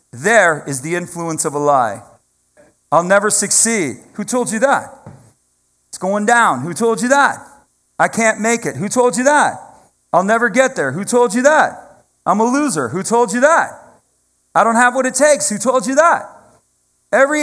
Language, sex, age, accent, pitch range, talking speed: English, male, 40-59, American, 155-230 Hz, 190 wpm